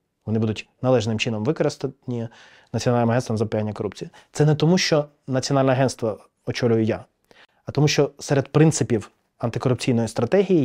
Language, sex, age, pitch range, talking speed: Ukrainian, male, 20-39, 115-145 Hz, 140 wpm